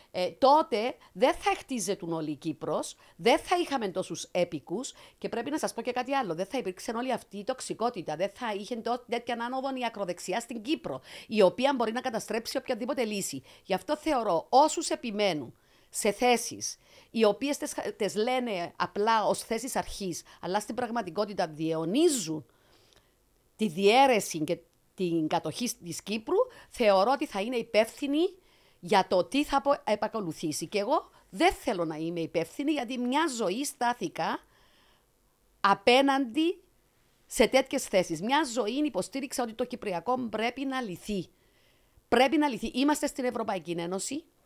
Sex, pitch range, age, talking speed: female, 180-270 Hz, 50-69, 150 wpm